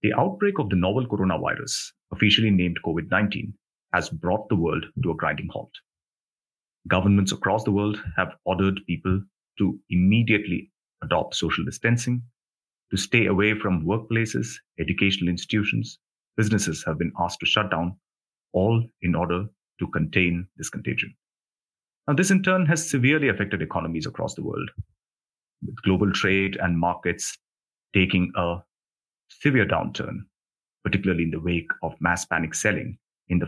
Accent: Indian